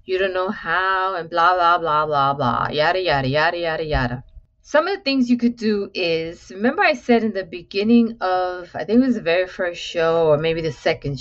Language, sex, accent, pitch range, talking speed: English, female, American, 150-215 Hz, 230 wpm